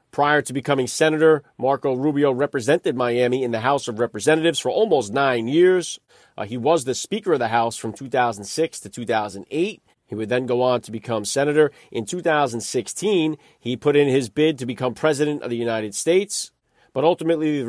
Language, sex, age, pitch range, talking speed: English, male, 40-59, 125-155 Hz, 185 wpm